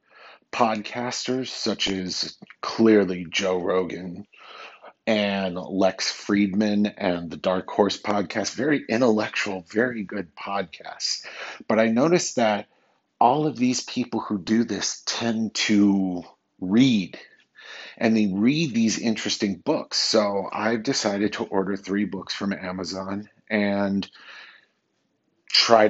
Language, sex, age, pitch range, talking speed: English, male, 40-59, 95-110 Hz, 115 wpm